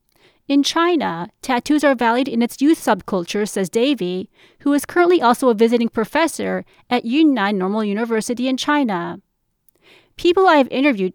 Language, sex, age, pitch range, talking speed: English, female, 30-49, 205-290 Hz, 150 wpm